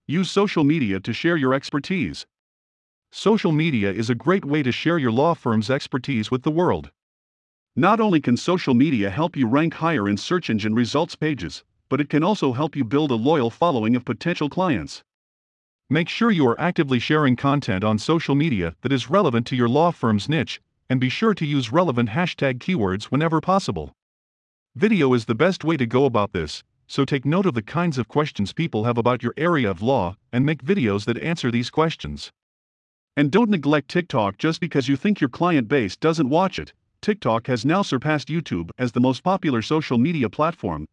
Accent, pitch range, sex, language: American, 110-160 Hz, male, English